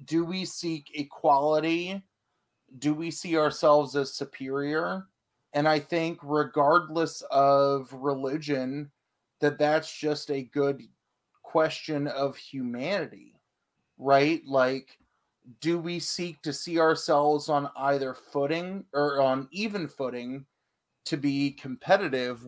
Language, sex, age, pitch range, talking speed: English, male, 30-49, 130-155 Hz, 110 wpm